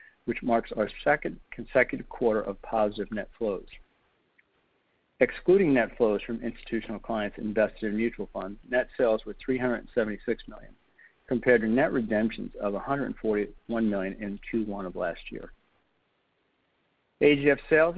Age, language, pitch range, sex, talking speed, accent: 50-69, English, 105-130 Hz, male, 130 wpm, American